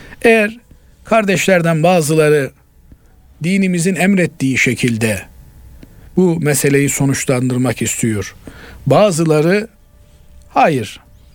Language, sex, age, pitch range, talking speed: Turkish, male, 50-69, 120-165 Hz, 65 wpm